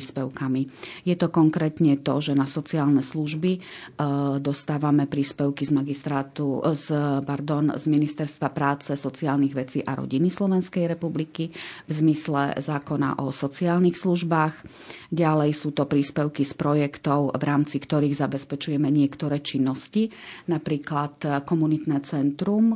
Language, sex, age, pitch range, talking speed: Slovak, female, 30-49, 140-155 Hz, 115 wpm